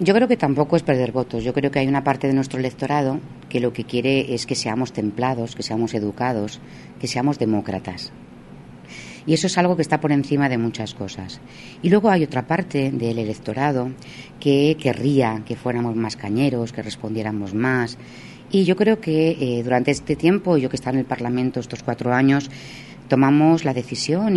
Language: Spanish